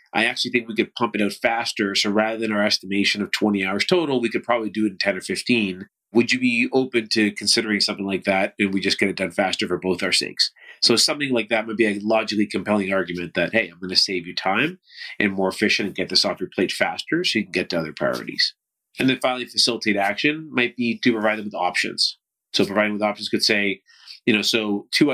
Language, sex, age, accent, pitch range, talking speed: English, male, 30-49, American, 100-120 Hz, 245 wpm